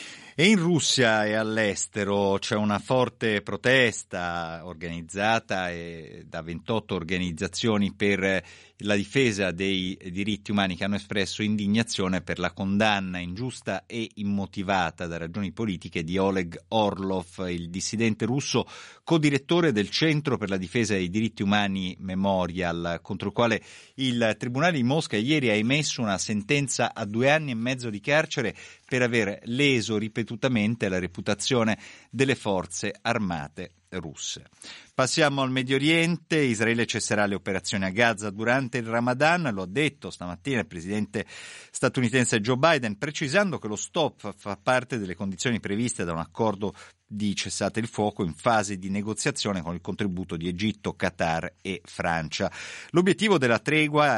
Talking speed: 145 wpm